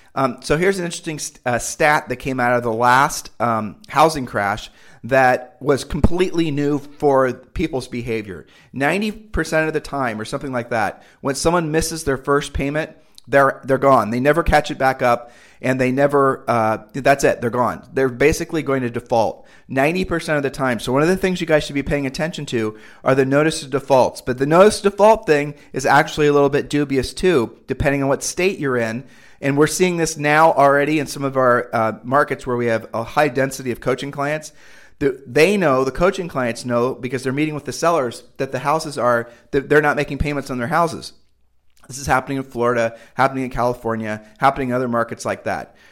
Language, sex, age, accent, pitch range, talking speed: English, male, 40-59, American, 125-150 Hz, 205 wpm